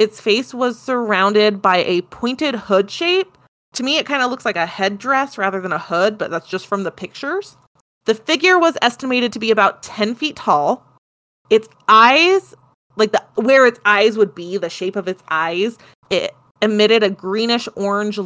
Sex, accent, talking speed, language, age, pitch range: female, American, 185 wpm, English, 20-39, 195-245 Hz